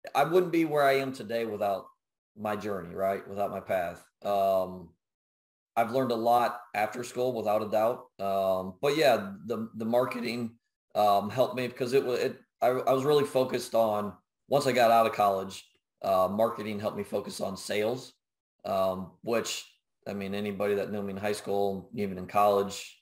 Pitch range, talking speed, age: 100-125 Hz, 180 wpm, 30-49